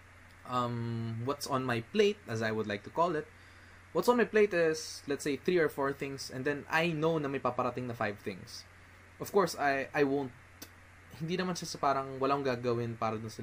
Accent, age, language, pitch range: native, 20-39, Filipino, 100-160 Hz